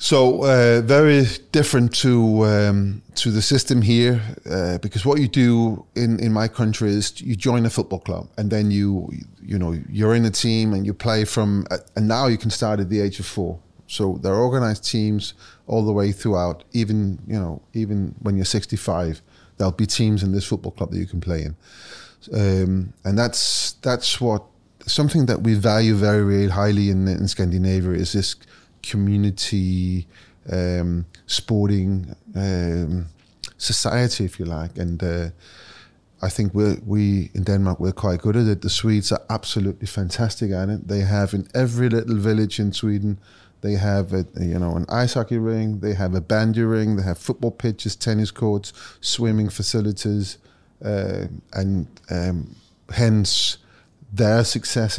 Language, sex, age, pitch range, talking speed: English, male, 30-49, 95-110 Hz, 170 wpm